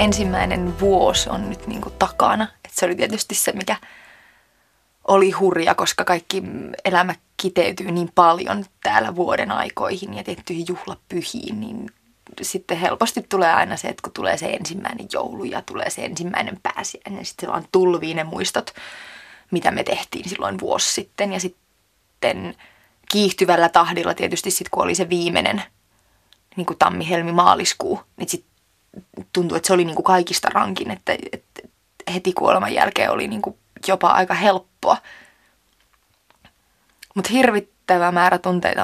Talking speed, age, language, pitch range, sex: 145 wpm, 20-39, Finnish, 180-205 Hz, female